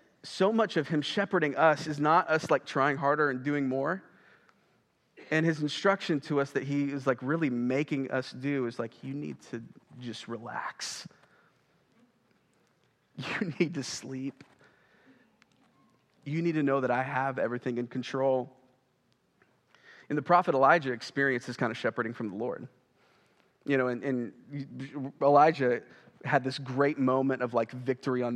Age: 30-49